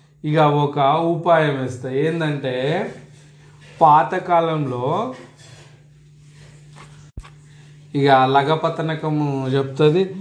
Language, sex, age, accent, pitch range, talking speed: Telugu, male, 30-49, native, 140-160 Hz, 65 wpm